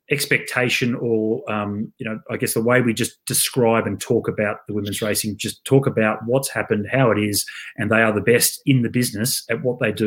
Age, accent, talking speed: 30-49, Australian, 225 wpm